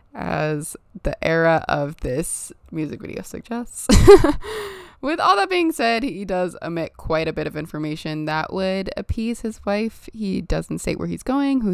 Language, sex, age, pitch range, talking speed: English, female, 20-39, 160-230 Hz, 170 wpm